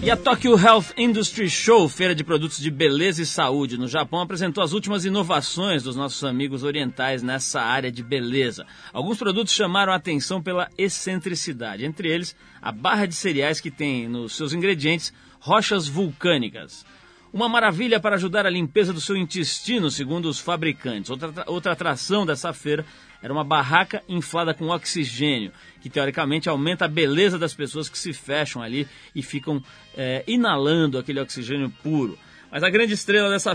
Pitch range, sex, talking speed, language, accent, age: 140-180 Hz, male, 165 wpm, Portuguese, Brazilian, 40-59